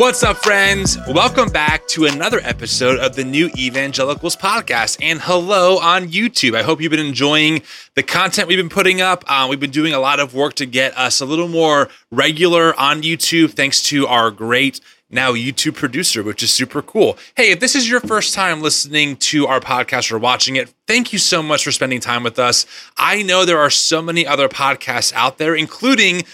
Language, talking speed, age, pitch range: English, 205 wpm, 20-39, 140-190 Hz